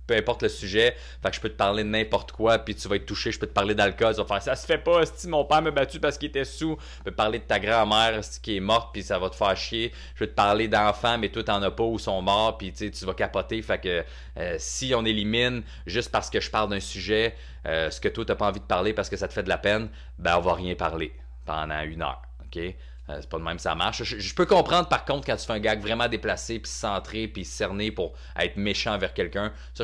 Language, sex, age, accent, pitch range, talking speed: French, male, 30-49, Canadian, 85-110 Hz, 280 wpm